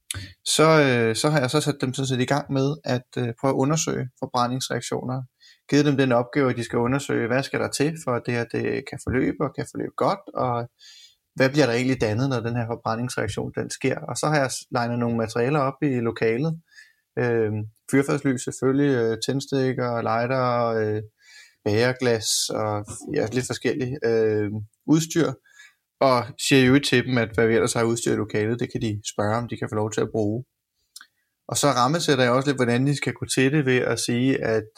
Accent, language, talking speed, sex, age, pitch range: native, Danish, 200 wpm, male, 20-39, 115-135 Hz